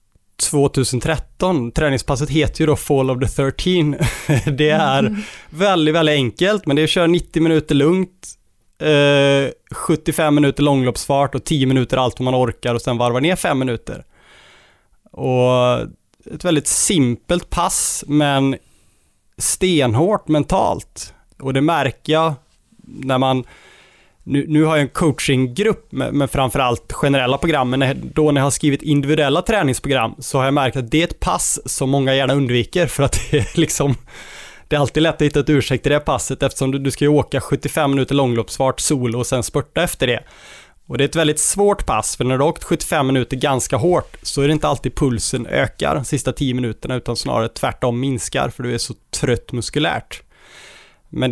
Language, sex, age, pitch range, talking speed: Swedish, male, 20-39, 130-155 Hz, 175 wpm